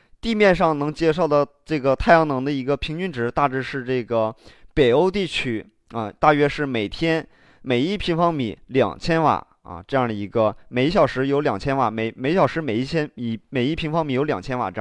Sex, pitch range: male, 115-160 Hz